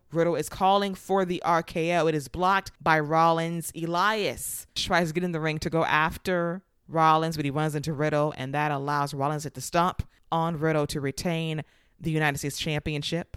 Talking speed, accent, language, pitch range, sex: 190 wpm, American, English, 155-175 Hz, female